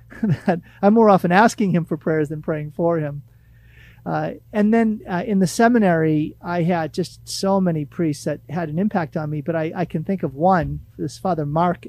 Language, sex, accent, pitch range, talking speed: English, male, American, 145-185 Hz, 200 wpm